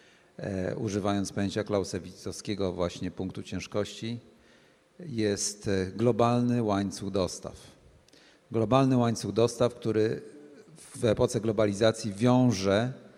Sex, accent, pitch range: male, native, 105-125 Hz